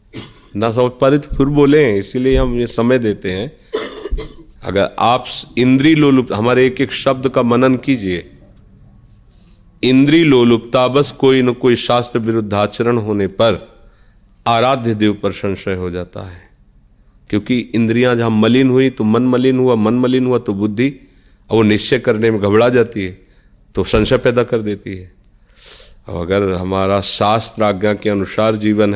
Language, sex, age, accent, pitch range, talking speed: Hindi, male, 40-59, native, 100-125 Hz, 155 wpm